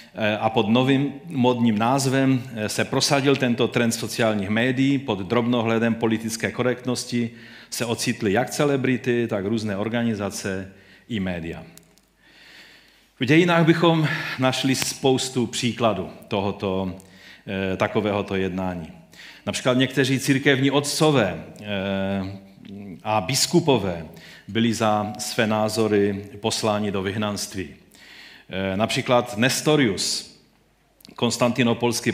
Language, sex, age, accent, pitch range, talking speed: Czech, male, 40-59, native, 105-130 Hz, 90 wpm